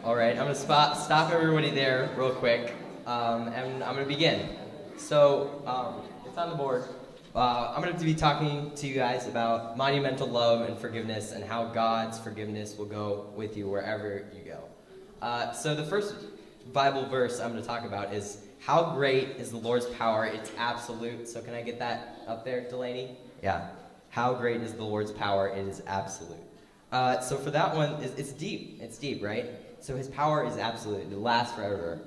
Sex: male